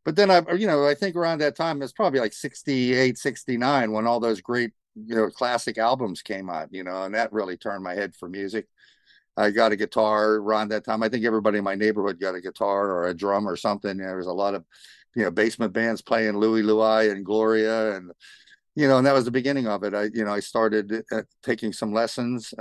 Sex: male